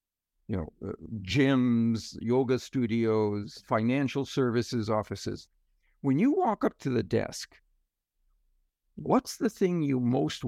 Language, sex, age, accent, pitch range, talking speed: English, male, 60-79, American, 115-170 Hz, 120 wpm